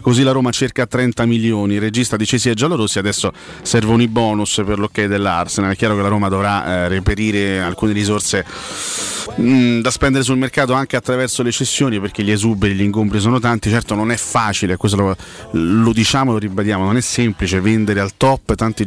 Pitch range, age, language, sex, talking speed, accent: 95-120 Hz, 30-49, Italian, male, 205 wpm, native